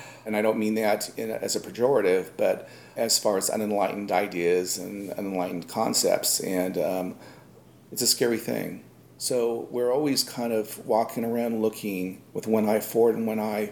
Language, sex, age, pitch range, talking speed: English, male, 40-59, 90-105 Hz, 165 wpm